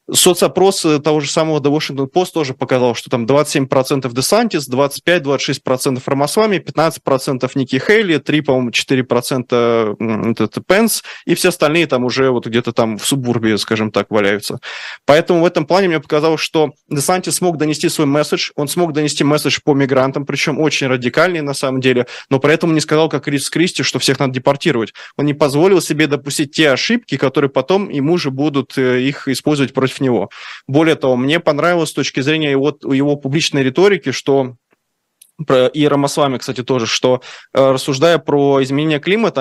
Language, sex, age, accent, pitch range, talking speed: Russian, male, 20-39, native, 130-155 Hz, 165 wpm